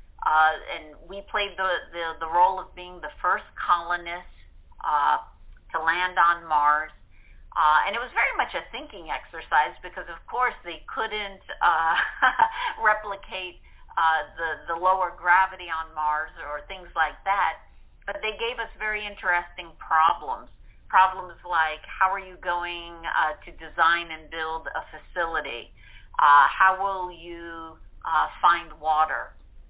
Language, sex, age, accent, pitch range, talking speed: English, female, 50-69, American, 160-190 Hz, 145 wpm